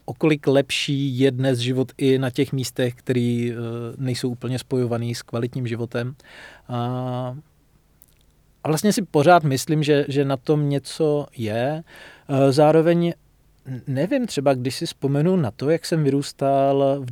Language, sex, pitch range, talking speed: Czech, male, 130-160 Hz, 135 wpm